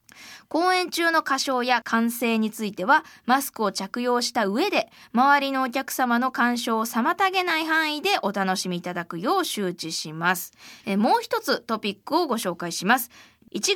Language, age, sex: Japanese, 20-39, female